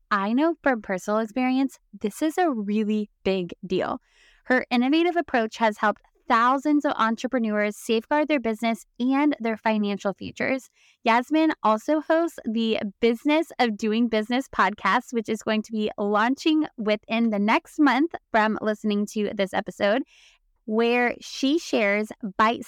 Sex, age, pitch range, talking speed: female, 10-29, 205-265 Hz, 145 wpm